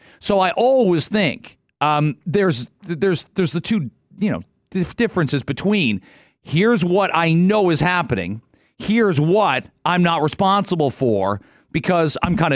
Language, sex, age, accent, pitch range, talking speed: English, male, 40-59, American, 140-195 Hz, 140 wpm